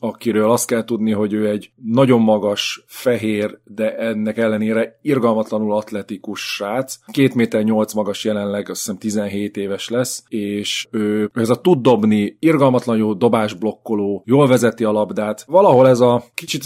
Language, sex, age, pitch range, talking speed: Hungarian, male, 30-49, 105-120 Hz, 150 wpm